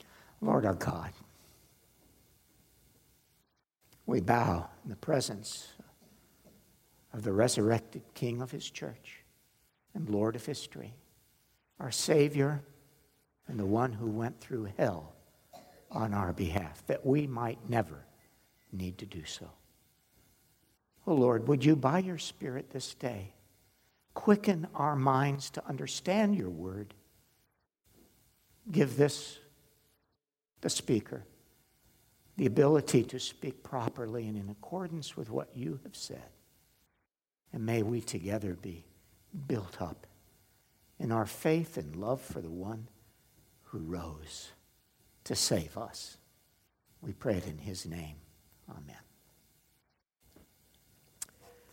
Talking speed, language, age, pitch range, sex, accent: 115 wpm, English, 60-79, 100-140 Hz, male, American